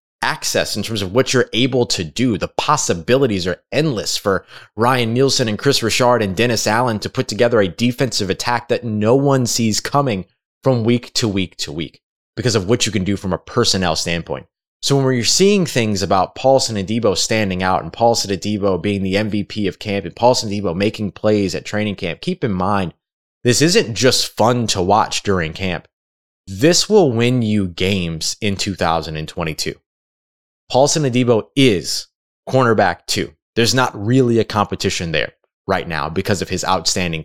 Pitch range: 95-125 Hz